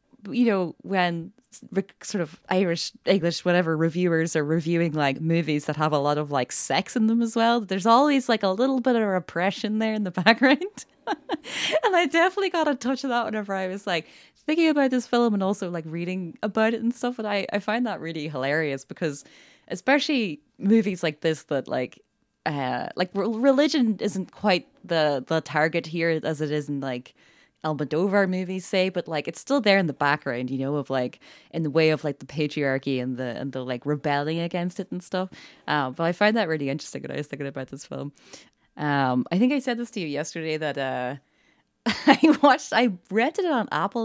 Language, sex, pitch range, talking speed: English, female, 150-230 Hz, 205 wpm